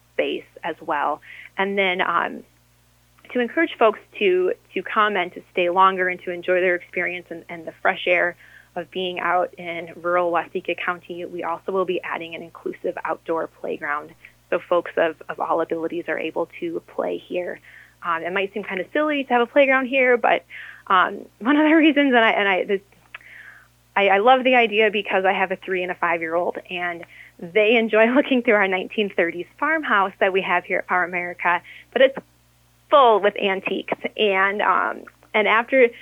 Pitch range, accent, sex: 175-255 Hz, American, female